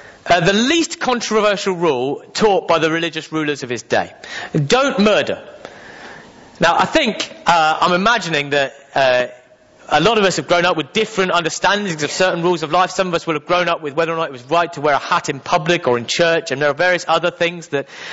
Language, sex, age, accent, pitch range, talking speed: English, male, 30-49, British, 155-230 Hz, 225 wpm